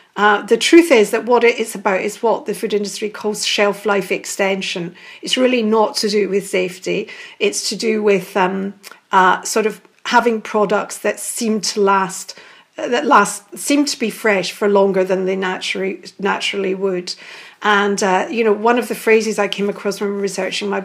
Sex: female